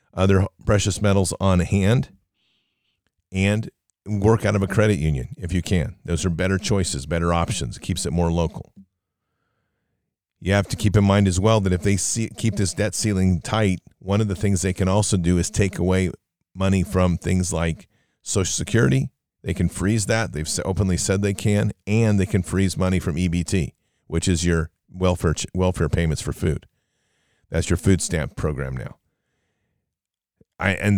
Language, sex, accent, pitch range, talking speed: English, male, American, 85-105 Hz, 175 wpm